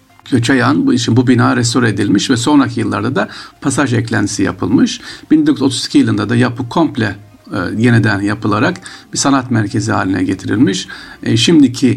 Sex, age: male, 50-69